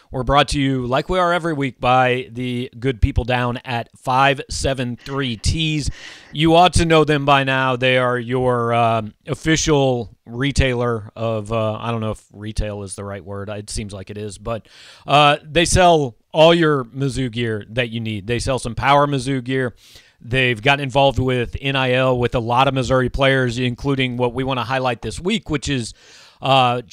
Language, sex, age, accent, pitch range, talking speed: English, male, 40-59, American, 120-140 Hz, 185 wpm